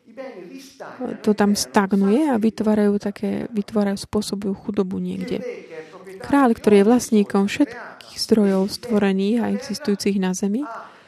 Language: Slovak